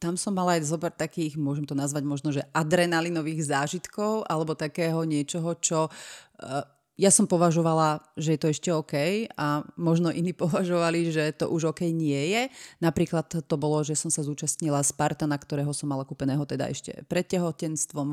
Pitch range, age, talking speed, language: 150-175 Hz, 30-49, 170 wpm, Slovak